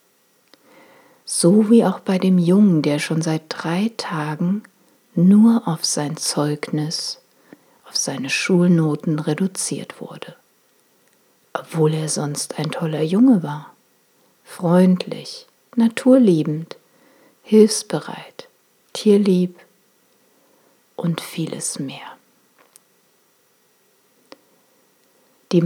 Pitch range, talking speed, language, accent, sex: 160-210 Hz, 80 wpm, German, German, female